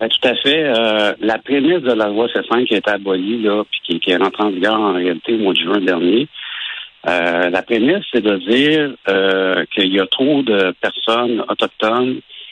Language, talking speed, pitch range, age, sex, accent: French, 200 wpm, 95-120 Hz, 60-79, male, French